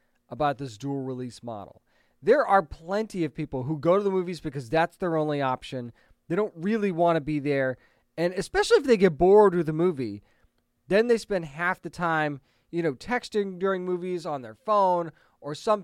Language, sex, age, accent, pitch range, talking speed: English, male, 20-39, American, 145-185 Hz, 195 wpm